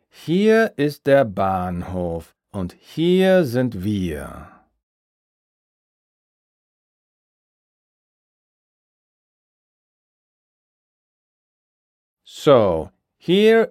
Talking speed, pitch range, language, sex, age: 45 wpm, 90-140 Hz, German, male, 40-59